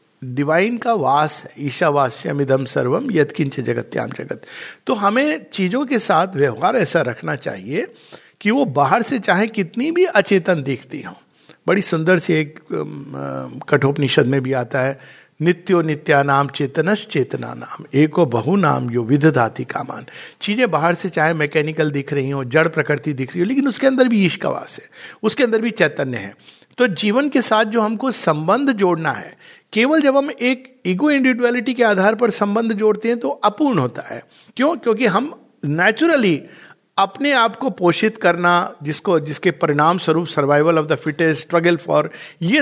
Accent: native